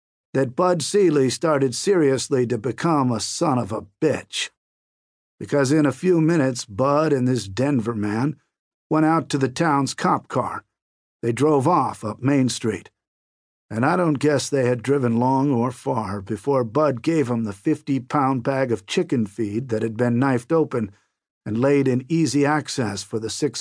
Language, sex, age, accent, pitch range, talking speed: English, male, 50-69, American, 115-150 Hz, 175 wpm